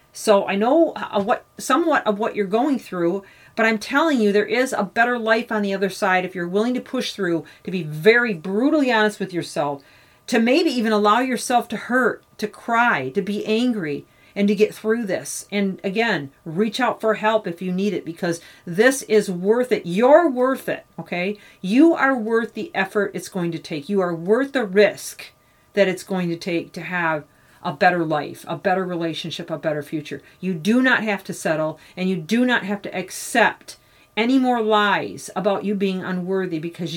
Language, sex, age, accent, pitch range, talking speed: English, female, 40-59, American, 180-230 Hz, 200 wpm